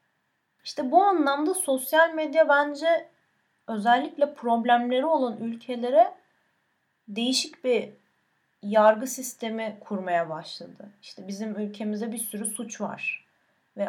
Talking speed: 105 wpm